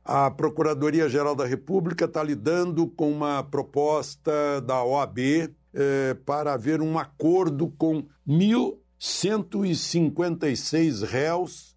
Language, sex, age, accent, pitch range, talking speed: Portuguese, male, 60-79, Brazilian, 130-160 Hz, 90 wpm